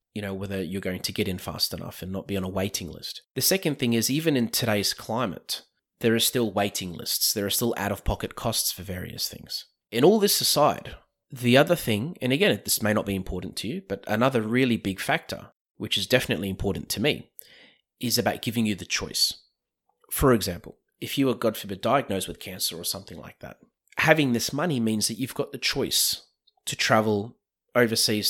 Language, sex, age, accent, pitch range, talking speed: English, male, 30-49, Australian, 100-120 Hz, 205 wpm